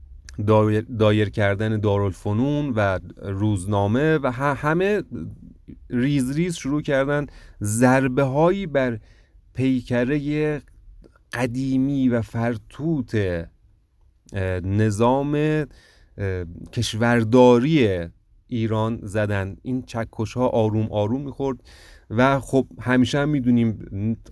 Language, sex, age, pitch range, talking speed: Persian, male, 30-49, 100-125 Hz, 85 wpm